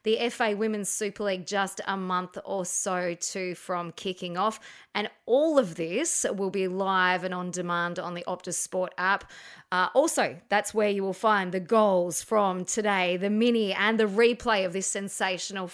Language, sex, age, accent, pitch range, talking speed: English, female, 20-39, Australian, 185-230 Hz, 185 wpm